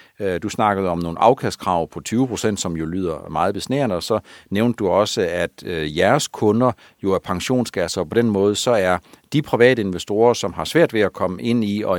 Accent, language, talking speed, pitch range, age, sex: native, Danish, 200 wpm, 90-115 Hz, 60-79, male